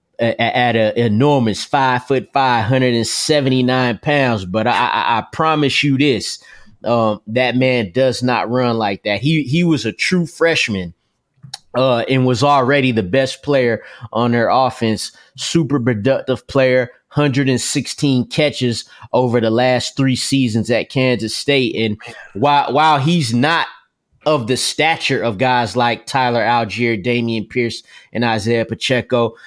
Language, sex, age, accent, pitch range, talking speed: English, male, 20-39, American, 120-140 Hz, 155 wpm